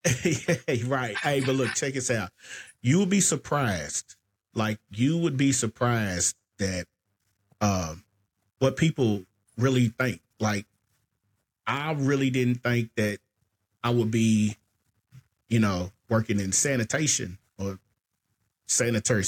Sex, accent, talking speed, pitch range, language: male, American, 120 wpm, 100-125 Hz, English